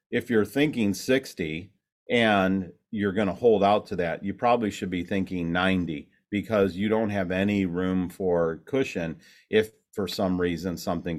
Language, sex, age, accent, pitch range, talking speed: English, male, 40-59, American, 90-105 Hz, 165 wpm